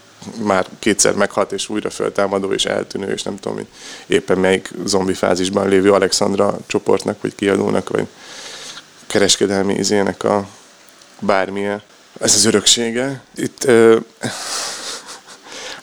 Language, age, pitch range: Hungarian, 20-39, 95-105 Hz